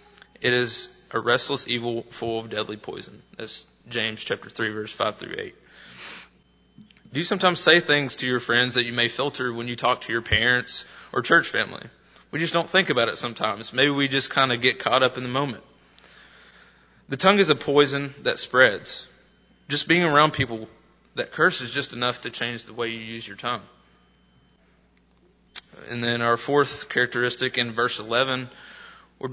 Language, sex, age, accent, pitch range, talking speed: English, male, 20-39, American, 115-135 Hz, 180 wpm